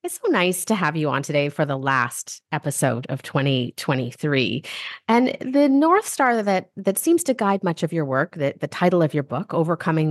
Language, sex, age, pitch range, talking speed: English, female, 30-49, 140-190 Hz, 200 wpm